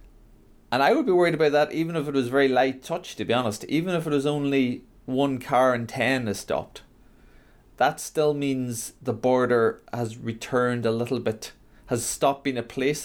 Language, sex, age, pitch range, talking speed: English, male, 30-49, 100-120 Hz, 200 wpm